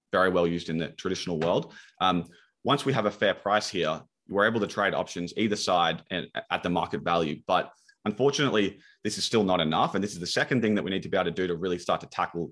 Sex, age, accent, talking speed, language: male, 20-39, Australian, 250 wpm, English